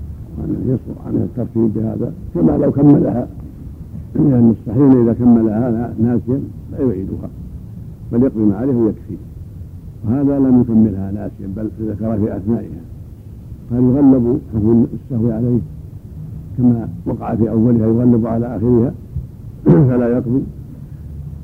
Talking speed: 110 wpm